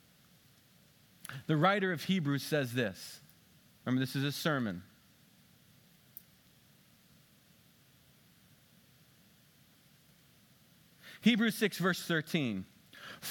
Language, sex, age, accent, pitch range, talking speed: English, male, 40-59, American, 155-225 Hz, 70 wpm